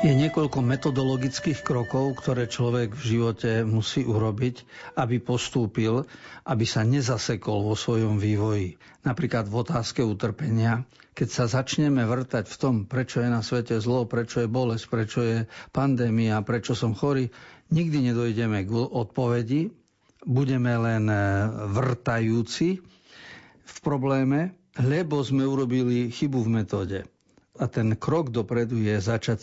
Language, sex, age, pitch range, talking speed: Slovak, male, 50-69, 110-135 Hz, 130 wpm